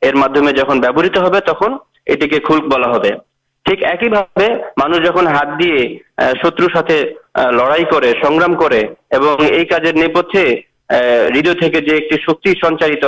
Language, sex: Urdu, male